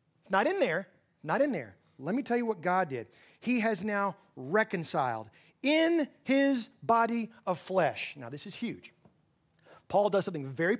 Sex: male